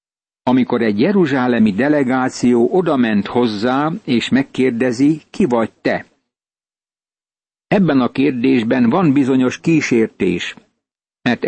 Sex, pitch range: male, 120-145 Hz